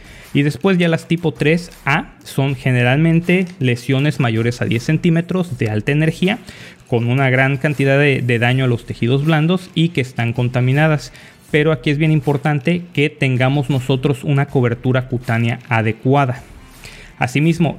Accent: Mexican